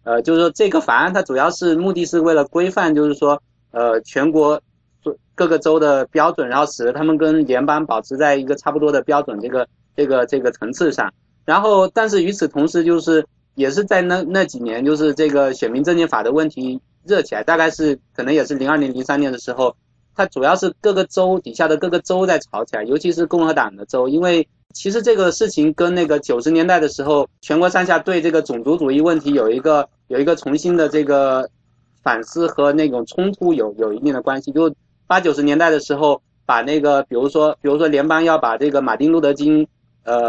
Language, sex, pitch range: Chinese, male, 140-165 Hz